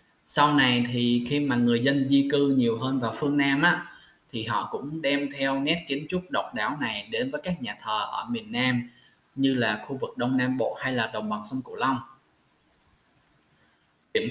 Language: Vietnamese